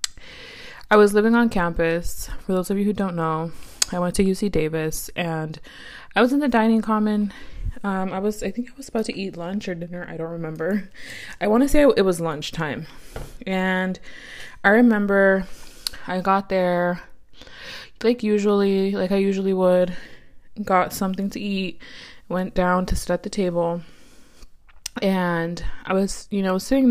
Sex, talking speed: female, 165 wpm